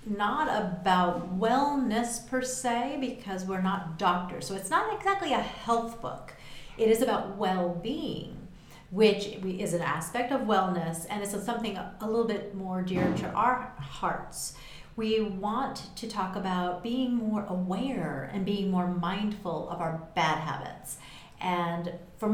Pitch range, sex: 175-220 Hz, female